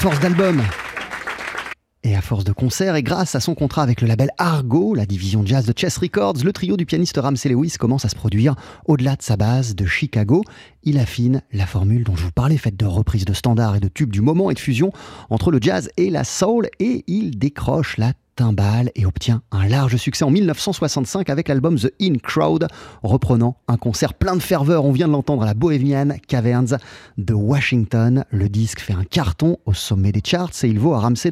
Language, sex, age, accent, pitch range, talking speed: French, male, 30-49, French, 110-155 Hz, 215 wpm